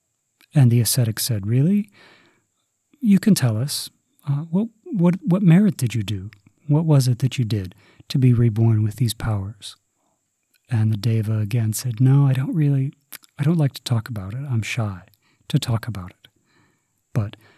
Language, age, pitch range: English, 40-59, 110-140 Hz